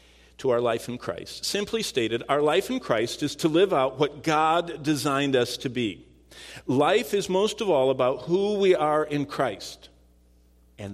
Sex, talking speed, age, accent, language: male, 180 wpm, 50-69, American, English